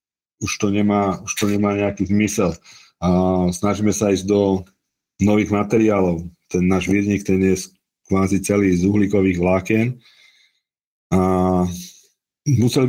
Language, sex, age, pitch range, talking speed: Slovak, male, 40-59, 95-110 Hz, 115 wpm